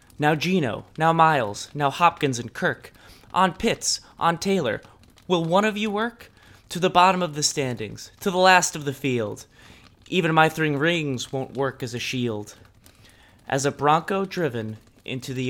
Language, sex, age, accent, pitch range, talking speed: English, male, 20-39, American, 115-155 Hz, 170 wpm